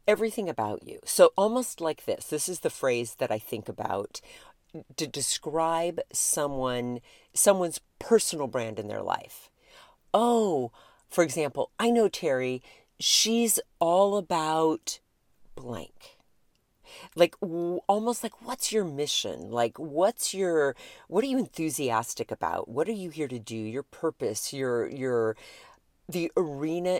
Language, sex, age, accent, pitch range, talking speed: English, female, 40-59, American, 125-195 Hz, 135 wpm